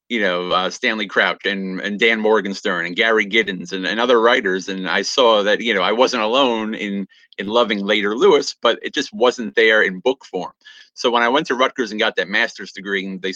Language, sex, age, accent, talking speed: English, male, 30-49, American, 230 wpm